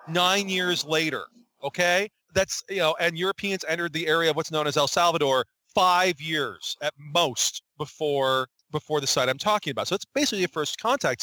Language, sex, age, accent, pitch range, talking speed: English, male, 40-59, American, 155-220 Hz, 185 wpm